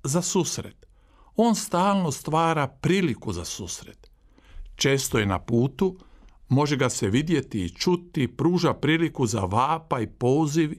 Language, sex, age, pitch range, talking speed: Croatian, male, 50-69, 125-175 Hz, 130 wpm